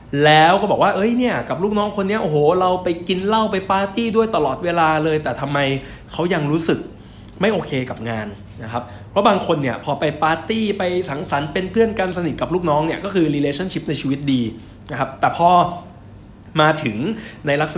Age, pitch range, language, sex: 20-39, 120-170 Hz, Thai, male